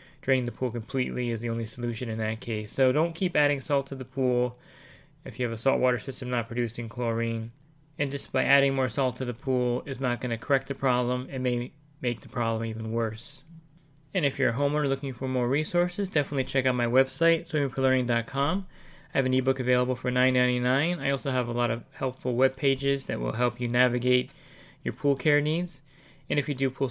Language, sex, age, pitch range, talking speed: English, male, 20-39, 125-145 Hz, 215 wpm